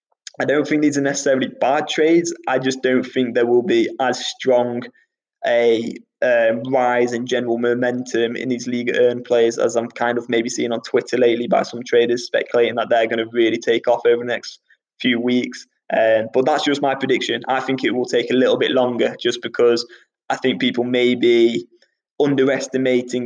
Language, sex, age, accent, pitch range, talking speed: English, male, 20-39, British, 120-130 Hz, 195 wpm